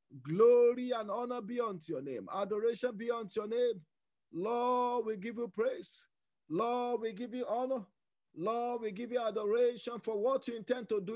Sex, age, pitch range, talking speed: male, 50-69, 210-245 Hz, 175 wpm